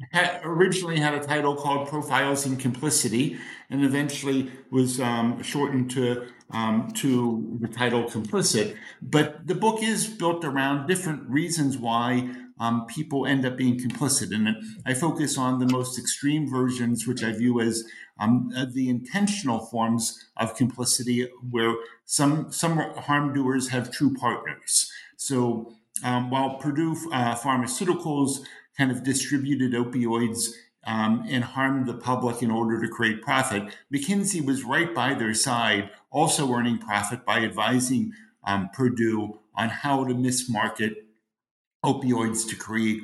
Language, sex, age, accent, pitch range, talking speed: English, male, 50-69, American, 120-145 Hz, 140 wpm